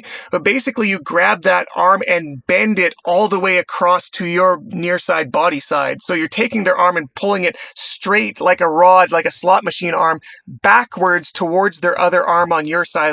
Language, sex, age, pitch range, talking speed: English, male, 30-49, 165-205 Hz, 200 wpm